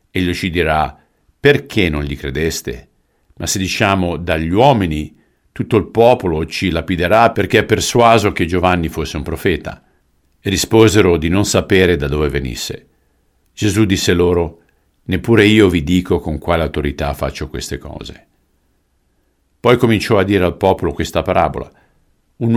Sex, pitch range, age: male, 80-105 Hz, 50-69